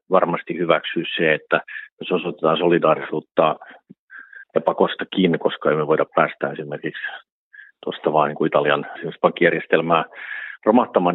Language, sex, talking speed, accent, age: Finnish, male, 115 wpm, native, 50-69